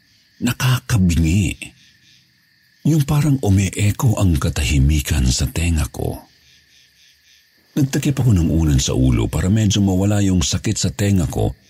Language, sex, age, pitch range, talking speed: Filipino, male, 50-69, 75-125 Hz, 125 wpm